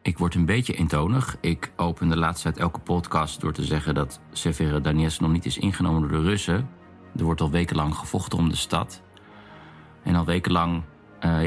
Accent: Dutch